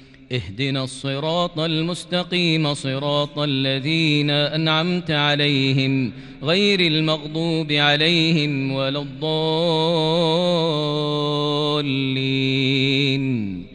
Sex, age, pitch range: male, 30-49, 135-170 Hz